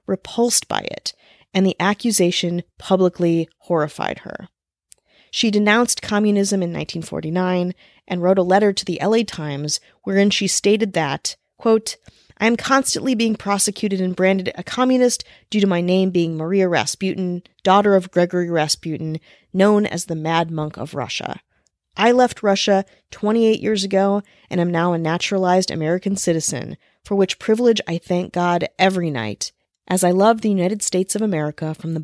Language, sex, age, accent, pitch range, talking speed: English, female, 30-49, American, 170-210 Hz, 160 wpm